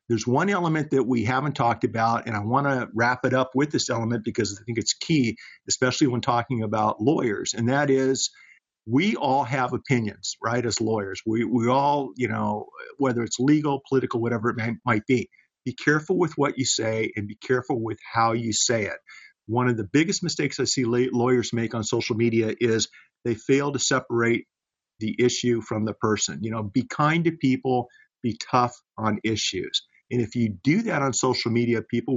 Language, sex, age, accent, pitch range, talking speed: English, male, 50-69, American, 115-135 Hz, 200 wpm